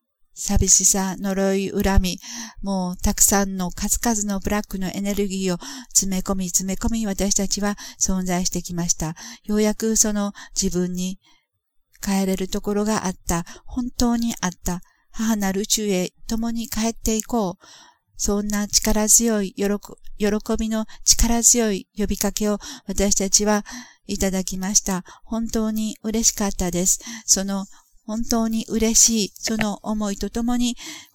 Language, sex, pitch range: Japanese, female, 185-215 Hz